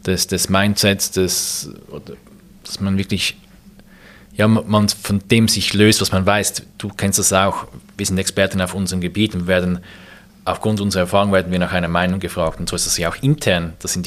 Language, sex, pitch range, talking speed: German, male, 90-105 Hz, 200 wpm